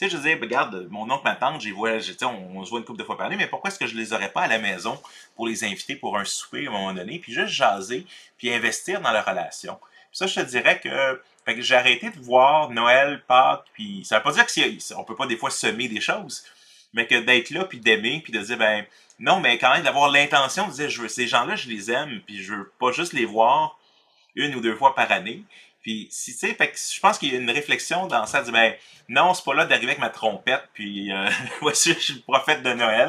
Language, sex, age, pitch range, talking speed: French, male, 30-49, 110-145 Hz, 275 wpm